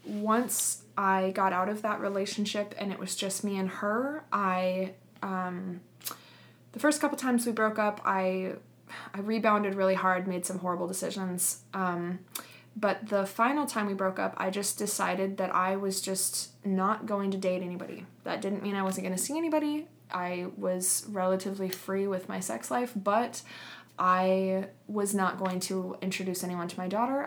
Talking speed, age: 175 wpm, 20-39